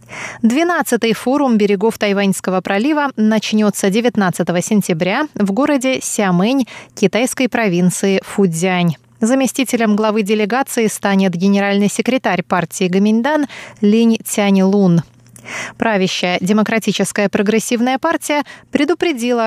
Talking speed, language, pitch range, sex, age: 90 wpm, Russian, 190-245 Hz, female, 20-39